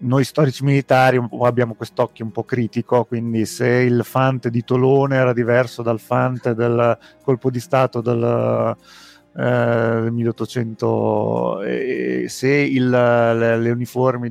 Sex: male